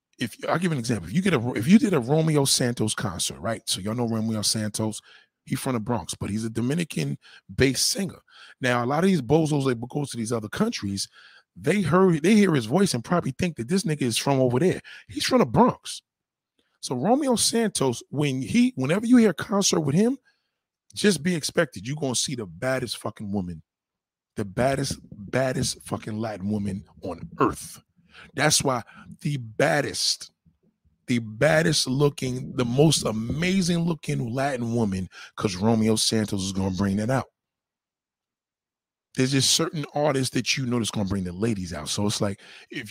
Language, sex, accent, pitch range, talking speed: English, male, American, 110-160 Hz, 185 wpm